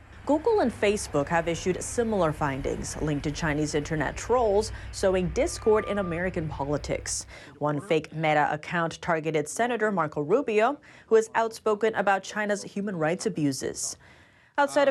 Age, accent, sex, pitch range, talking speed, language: 30-49, American, female, 160-225 Hz, 135 wpm, English